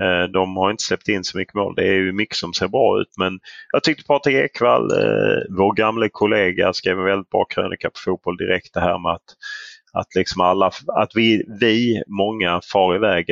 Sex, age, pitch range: male, 30-49, 95-110 Hz